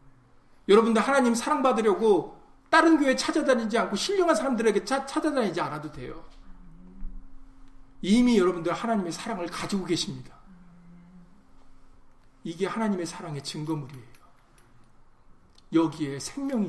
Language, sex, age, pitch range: Korean, male, 40-59, 125-180 Hz